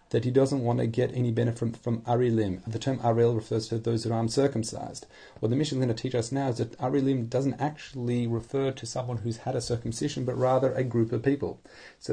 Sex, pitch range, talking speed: male, 115-130 Hz, 235 wpm